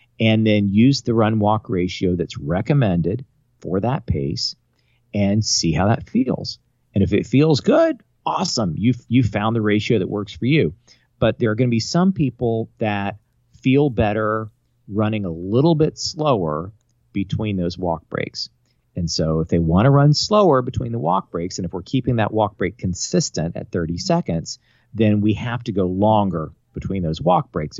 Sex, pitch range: male, 95-120 Hz